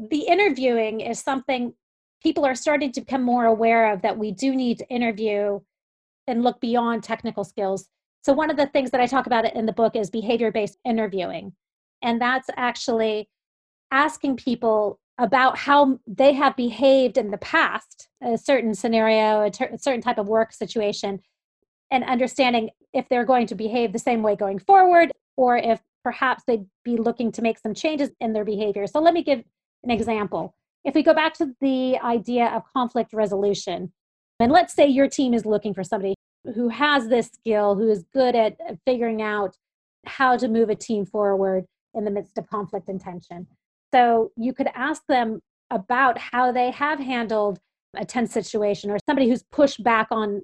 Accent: American